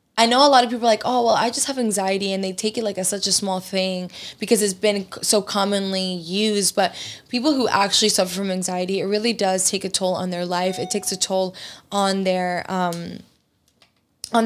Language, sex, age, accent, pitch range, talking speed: English, female, 20-39, American, 190-225 Hz, 225 wpm